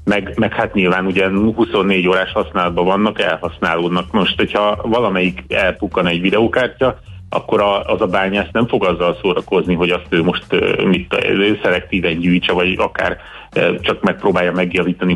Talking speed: 145 wpm